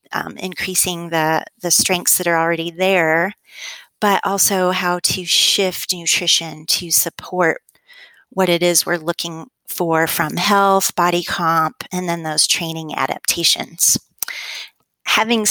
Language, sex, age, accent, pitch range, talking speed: English, female, 30-49, American, 170-205 Hz, 130 wpm